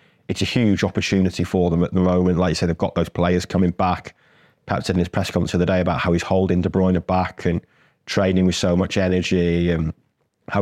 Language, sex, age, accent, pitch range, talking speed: English, male, 20-39, British, 90-100 Hz, 230 wpm